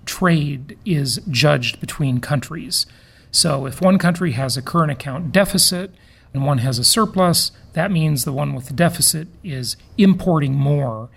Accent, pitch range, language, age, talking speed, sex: American, 135-175 Hz, English, 40-59, 155 wpm, male